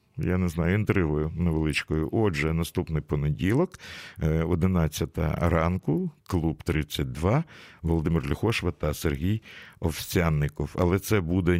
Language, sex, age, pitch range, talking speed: Russian, male, 50-69, 85-105 Hz, 105 wpm